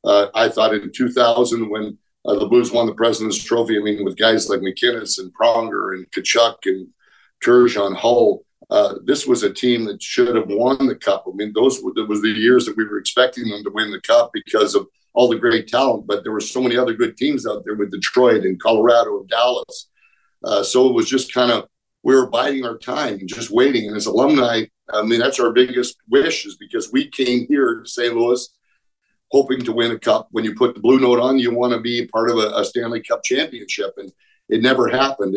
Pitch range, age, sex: 110-135 Hz, 50-69, male